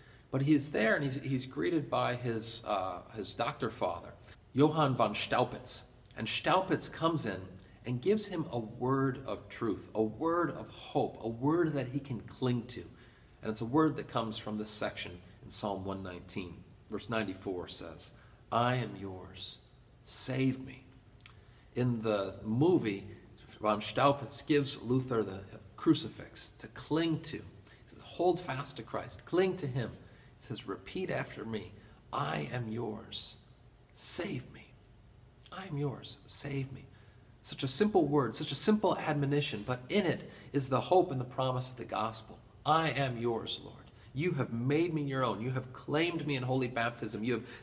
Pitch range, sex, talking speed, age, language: 110-140 Hz, male, 170 wpm, 40-59, English